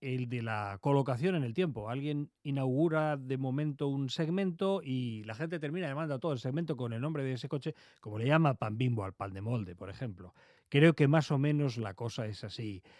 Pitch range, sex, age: 120-155 Hz, male, 40-59